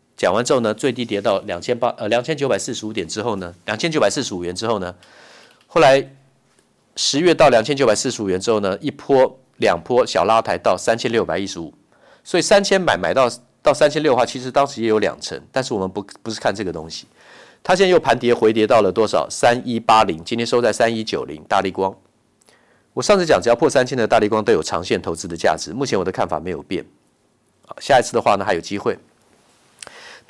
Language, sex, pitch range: Chinese, male, 100-135 Hz